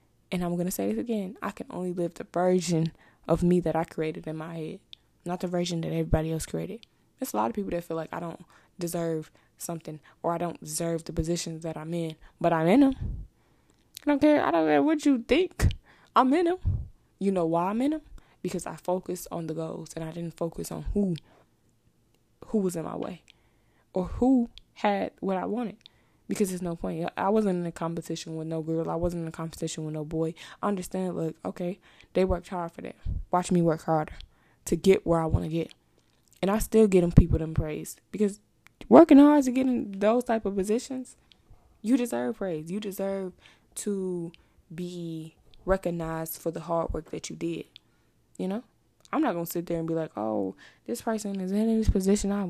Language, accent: English, American